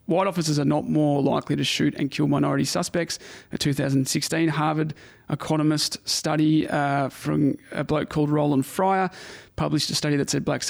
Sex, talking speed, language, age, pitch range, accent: male, 170 wpm, English, 30-49, 140-160 Hz, Australian